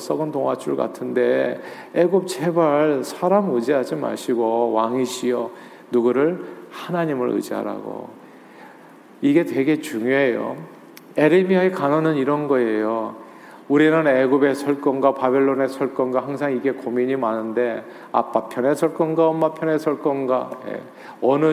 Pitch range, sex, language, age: 125-160 Hz, male, Korean, 40-59